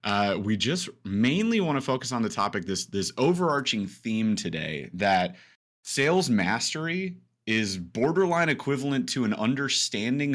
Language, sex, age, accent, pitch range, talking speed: English, male, 30-49, American, 95-130 Hz, 140 wpm